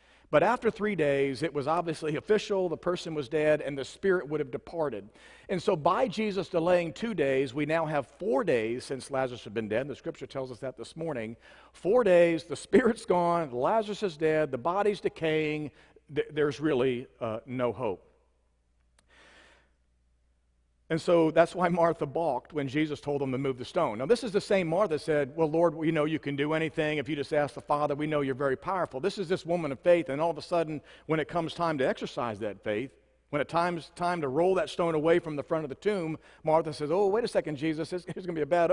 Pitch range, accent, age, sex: 135-170 Hz, American, 50-69, male